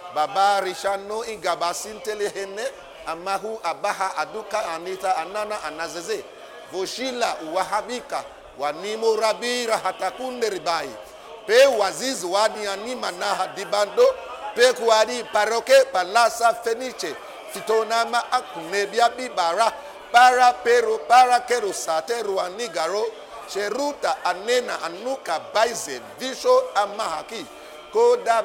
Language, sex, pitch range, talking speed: English, male, 200-245 Hz, 90 wpm